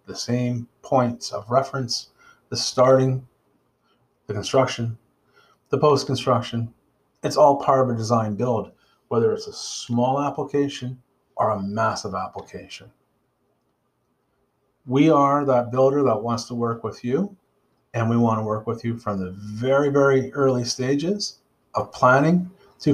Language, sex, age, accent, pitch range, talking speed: English, male, 40-59, American, 120-145 Hz, 140 wpm